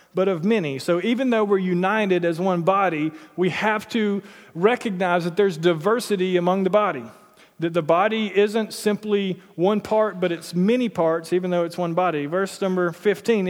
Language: English